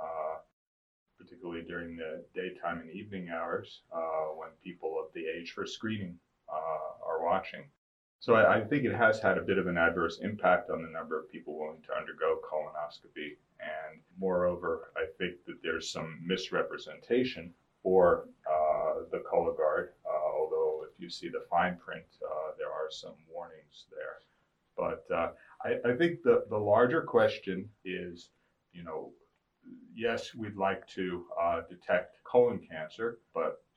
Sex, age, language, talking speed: male, 30-49, English, 160 wpm